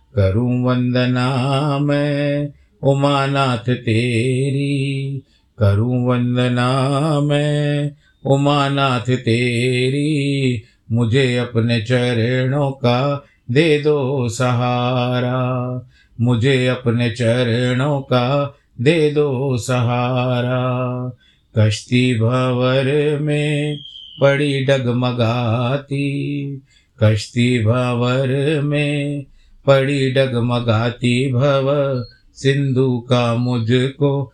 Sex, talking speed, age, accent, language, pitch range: male, 65 wpm, 50-69, native, Hindi, 120-140 Hz